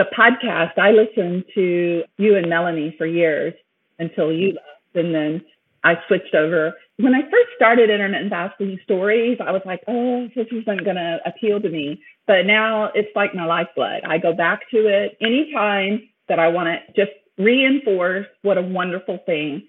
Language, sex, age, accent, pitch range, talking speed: English, female, 40-59, American, 180-225 Hz, 175 wpm